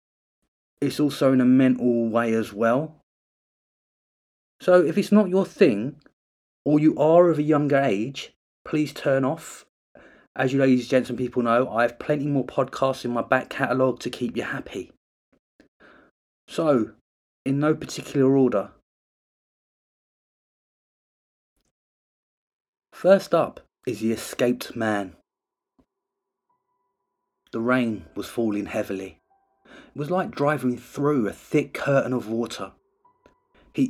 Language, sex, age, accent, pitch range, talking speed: English, male, 30-49, British, 120-155 Hz, 125 wpm